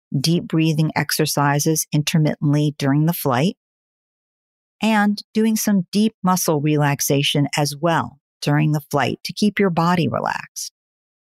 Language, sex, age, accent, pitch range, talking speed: English, female, 50-69, American, 150-205 Hz, 120 wpm